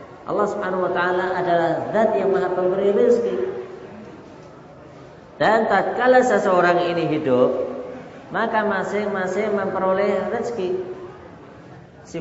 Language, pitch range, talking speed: Indonesian, 125-180 Hz, 105 wpm